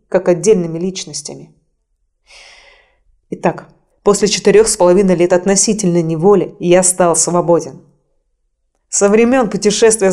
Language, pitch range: Russian, 170-210 Hz